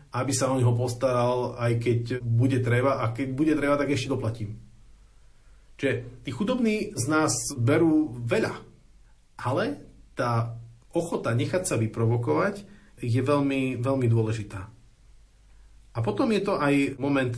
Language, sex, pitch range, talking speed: Slovak, male, 110-130 Hz, 140 wpm